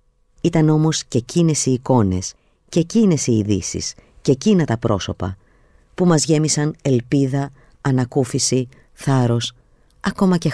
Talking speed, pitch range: 125 wpm, 105-165 Hz